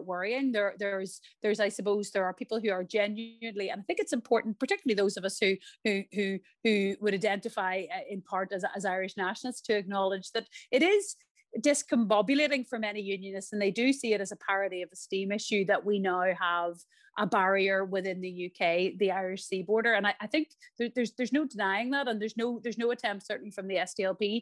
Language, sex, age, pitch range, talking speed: English, female, 30-49, 190-230 Hz, 215 wpm